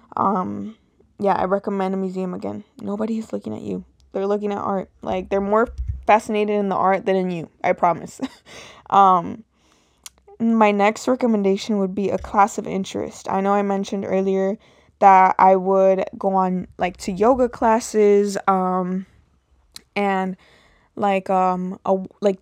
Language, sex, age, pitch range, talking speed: English, female, 20-39, 185-215 Hz, 155 wpm